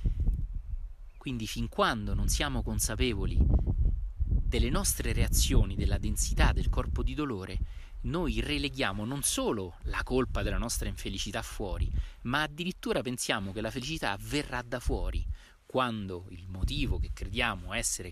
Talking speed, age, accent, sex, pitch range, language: 135 wpm, 30-49, native, male, 85-120 Hz, Italian